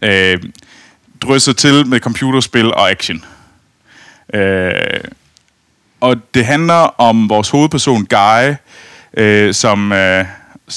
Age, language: 30-49, Danish